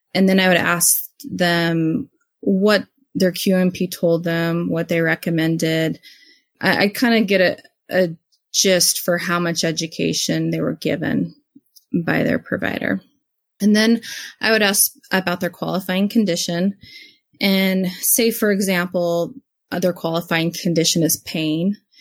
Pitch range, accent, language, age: 160-200 Hz, American, English, 20-39